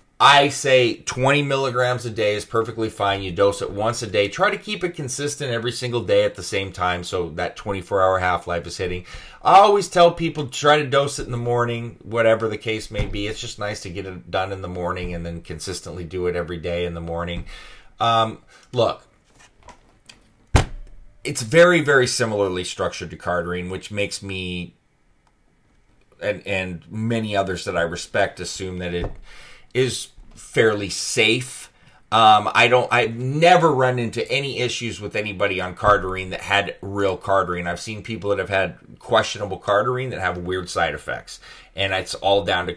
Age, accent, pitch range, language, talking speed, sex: 30-49, American, 95-120 Hz, English, 180 wpm, male